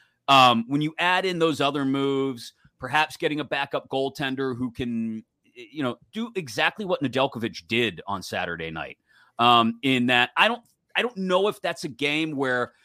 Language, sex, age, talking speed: English, male, 30-49, 180 wpm